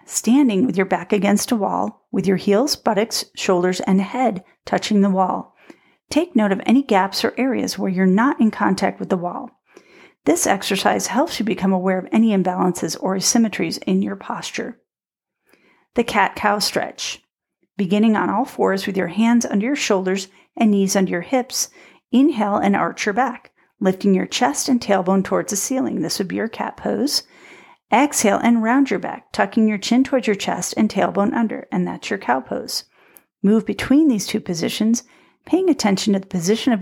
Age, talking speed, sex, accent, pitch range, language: 40-59, 185 wpm, female, American, 190-240 Hz, English